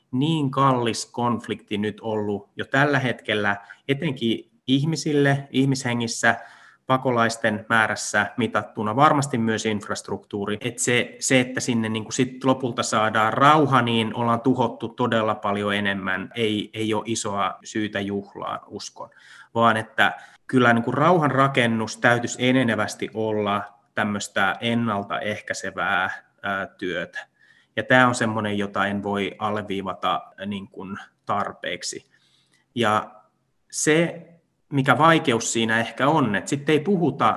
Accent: native